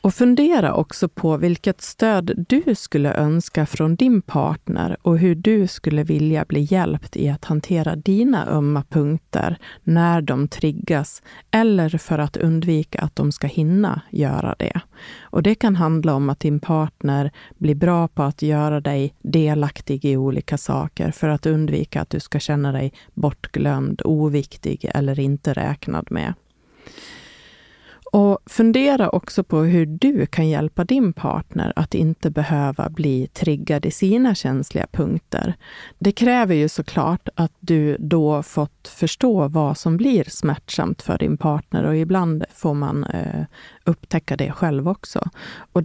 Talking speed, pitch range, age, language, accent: 150 wpm, 150-185 Hz, 30-49, Swedish, native